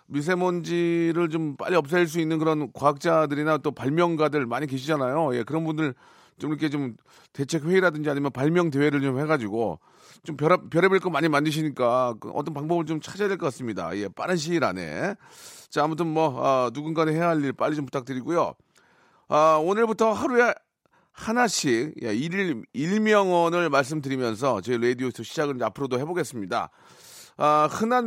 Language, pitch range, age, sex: Korean, 140-180 Hz, 40-59, male